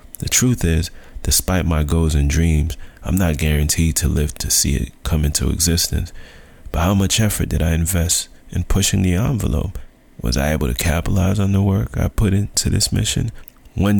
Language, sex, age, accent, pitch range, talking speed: English, male, 30-49, American, 75-100 Hz, 190 wpm